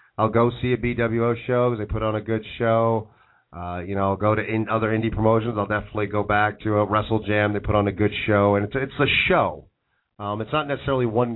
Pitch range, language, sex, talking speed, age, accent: 100-120 Hz, English, male, 250 wpm, 40-59, American